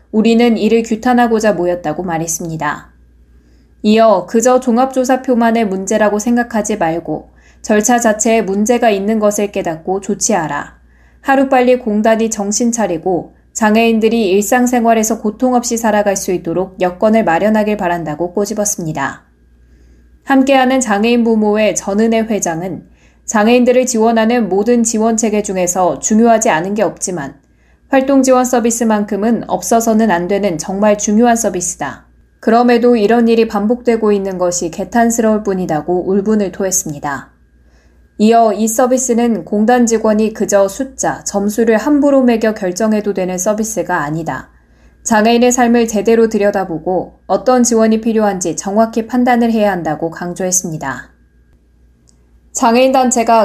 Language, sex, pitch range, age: Korean, female, 180-230 Hz, 20-39